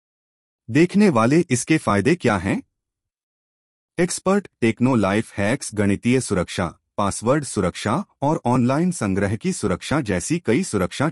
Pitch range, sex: 95-140 Hz, male